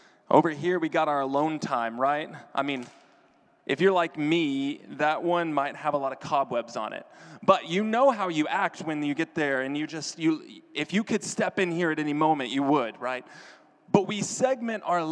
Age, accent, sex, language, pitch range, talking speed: 20-39, American, male, English, 140-185 Hz, 215 wpm